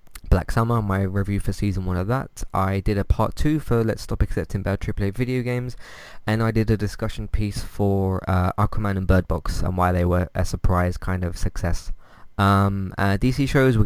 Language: English